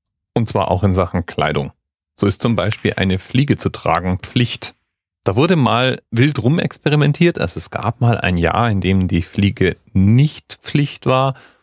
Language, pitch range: German, 95-120 Hz